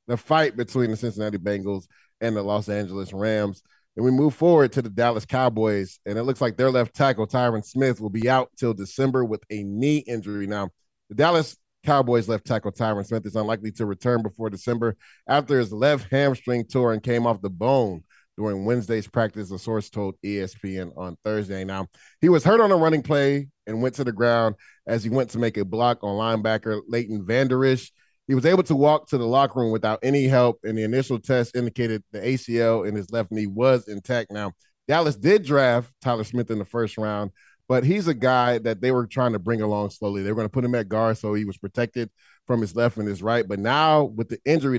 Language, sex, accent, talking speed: English, male, American, 220 wpm